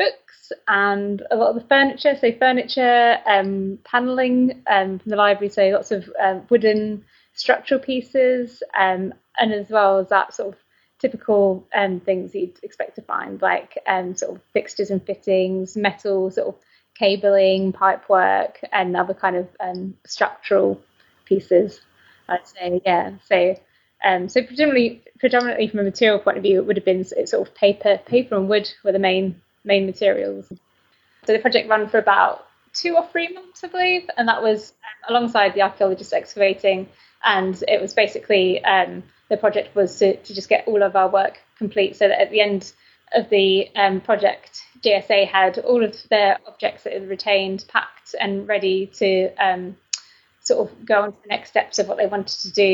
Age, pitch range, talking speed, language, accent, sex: 20-39, 190-225 Hz, 180 wpm, English, British, female